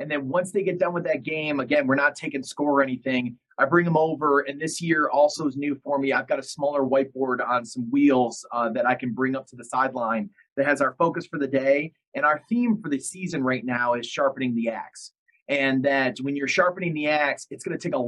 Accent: American